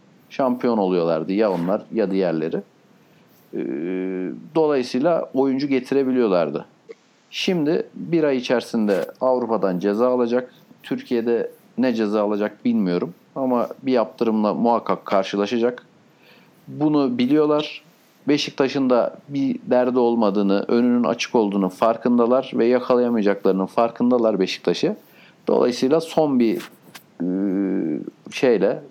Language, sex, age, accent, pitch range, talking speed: Turkish, male, 50-69, native, 105-140 Hz, 95 wpm